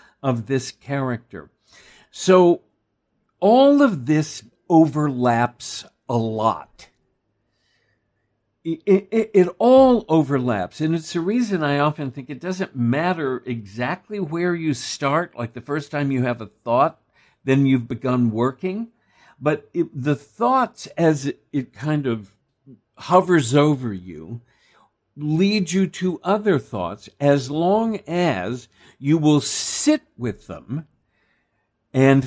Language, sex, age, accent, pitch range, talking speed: English, male, 60-79, American, 120-180 Hz, 125 wpm